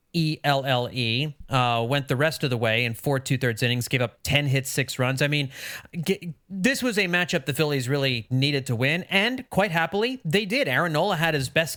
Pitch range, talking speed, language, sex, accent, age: 135-185 Hz, 200 wpm, English, male, American, 30-49